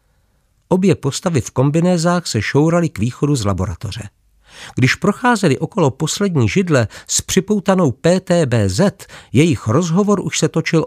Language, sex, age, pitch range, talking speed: Czech, male, 50-69, 110-170 Hz, 125 wpm